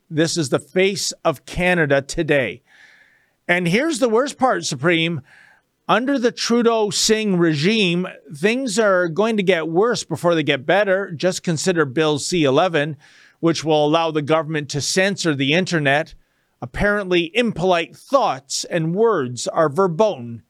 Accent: American